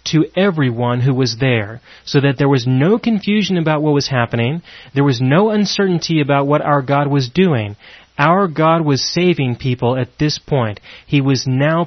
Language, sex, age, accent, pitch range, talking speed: English, male, 30-49, American, 130-160 Hz, 180 wpm